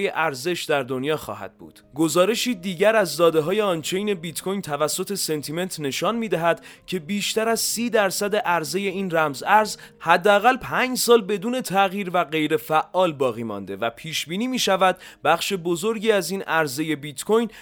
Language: Persian